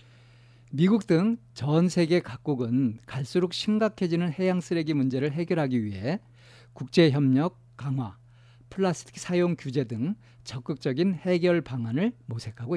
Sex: male